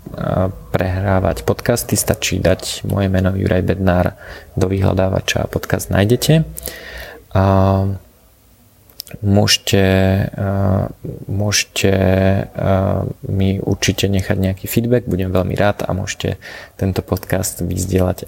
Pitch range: 95-100 Hz